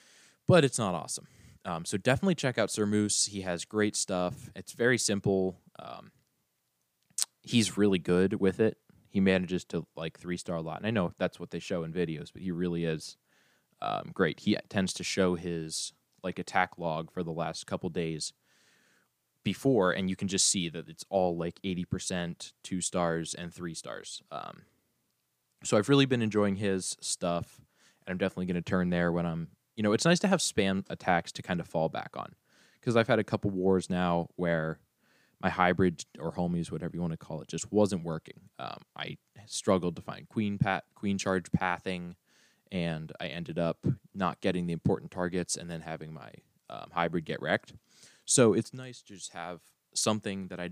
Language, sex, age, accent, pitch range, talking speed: English, male, 20-39, American, 85-100 Hz, 195 wpm